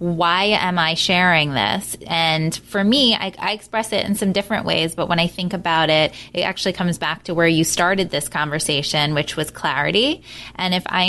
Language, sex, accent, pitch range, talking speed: English, female, American, 165-205 Hz, 205 wpm